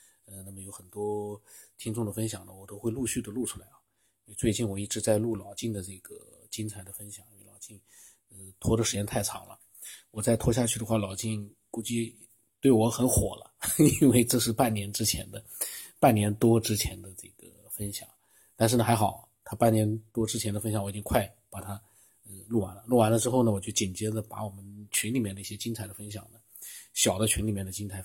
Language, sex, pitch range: Chinese, male, 100-115 Hz